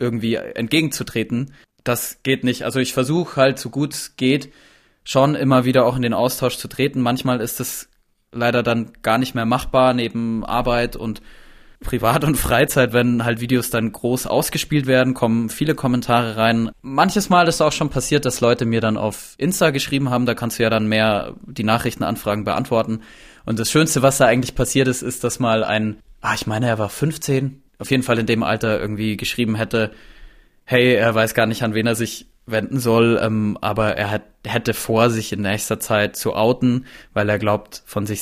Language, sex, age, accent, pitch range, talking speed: German, male, 20-39, German, 110-130 Hz, 195 wpm